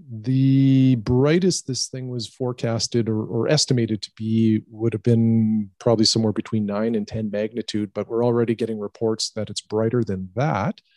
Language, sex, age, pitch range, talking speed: English, male, 40-59, 110-130 Hz, 170 wpm